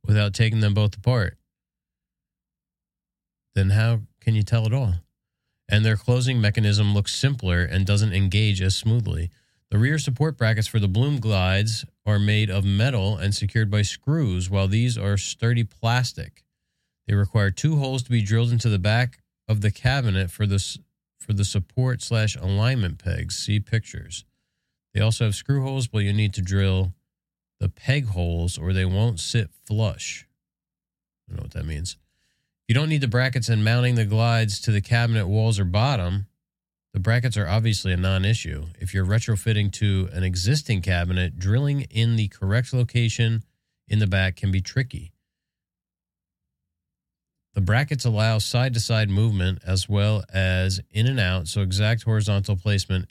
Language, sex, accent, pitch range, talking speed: English, male, American, 95-115 Hz, 165 wpm